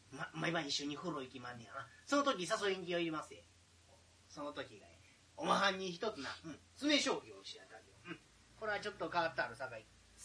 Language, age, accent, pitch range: Japanese, 30-49, native, 125-190 Hz